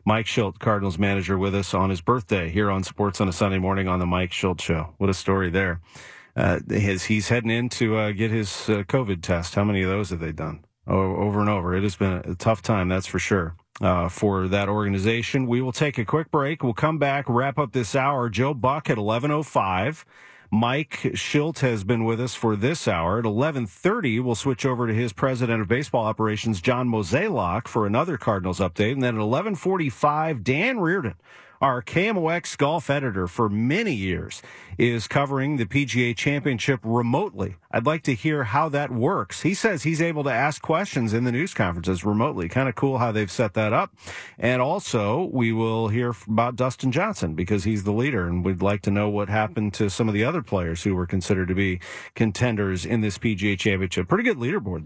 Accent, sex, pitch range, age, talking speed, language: American, male, 100-140 Hz, 40-59, 205 wpm, English